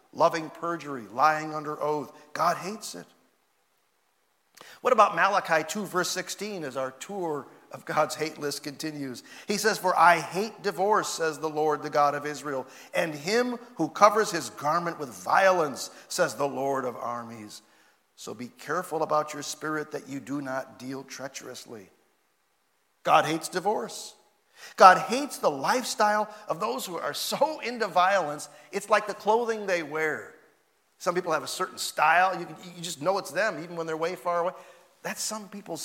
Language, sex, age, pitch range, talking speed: English, male, 50-69, 155-205 Hz, 165 wpm